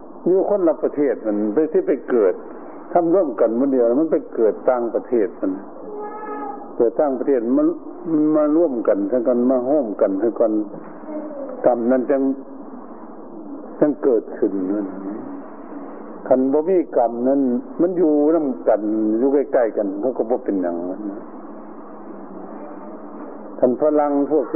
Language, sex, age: Thai, male, 60-79